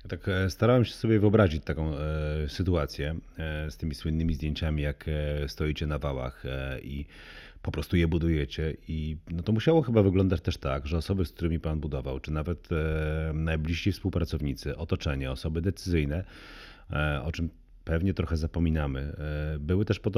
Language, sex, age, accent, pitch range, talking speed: Polish, male, 40-59, native, 75-95 Hz, 145 wpm